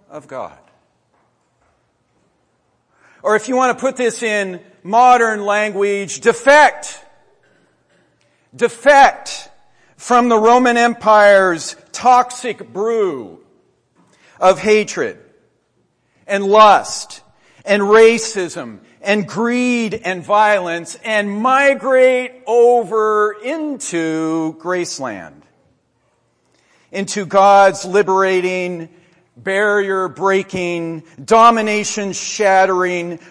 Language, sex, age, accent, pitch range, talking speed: English, male, 50-69, American, 185-235 Hz, 70 wpm